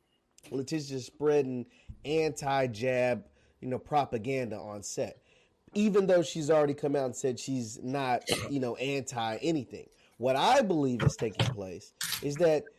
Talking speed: 140 wpm